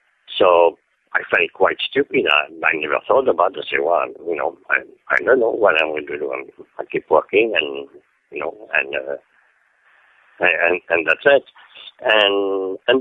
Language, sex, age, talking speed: English, male, 60-79, 175 wpm